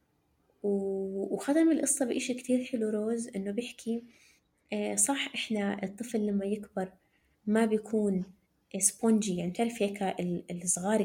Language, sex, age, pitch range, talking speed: Arabic, female, 20-39, 200-240 Hz, 110 wpm